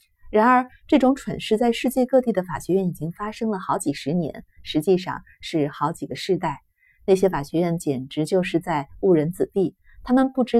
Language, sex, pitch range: Chinese, female, 160-220 Hz